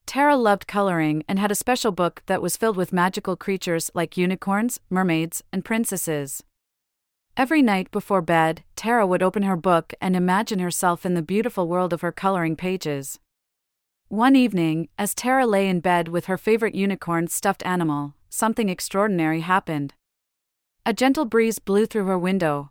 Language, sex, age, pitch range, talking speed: English, female, 30-49, 165-210 Hz, 165 wpm